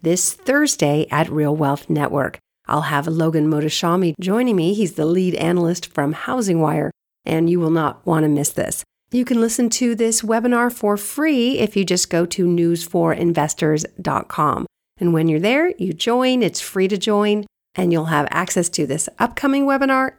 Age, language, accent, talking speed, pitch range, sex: 40-59, English, American, 175 wpm, 170-240 Hz, female